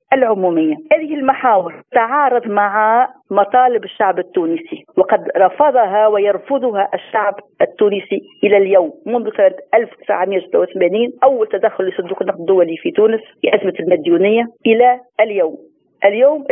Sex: female